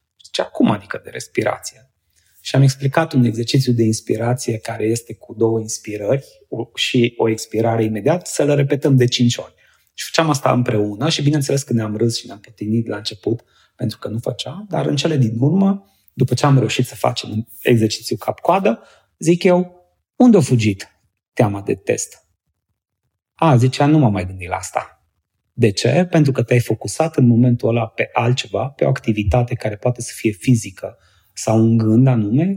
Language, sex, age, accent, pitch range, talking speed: Romanian, male, 30-49, native, 110-145 Hz, 180 wpm